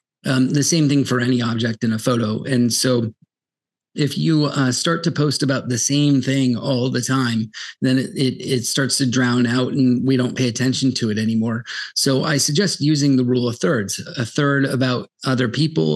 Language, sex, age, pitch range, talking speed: English, male, 30-49, 120-135 Hz, 205 wpm